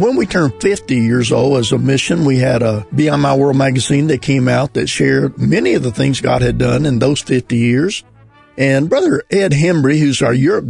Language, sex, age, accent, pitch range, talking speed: English, male, 50-69, American, 130-160 Hz, 220 wpm